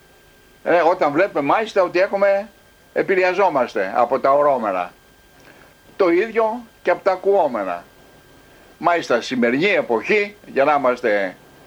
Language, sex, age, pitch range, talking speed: Greek, male, 60-79, 130-200 Hz, 110 wpm